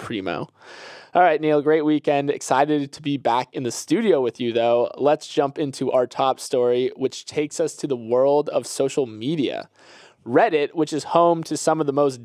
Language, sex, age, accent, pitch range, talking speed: English, male, 20-39, American, 135-165 Hz, 195 wpm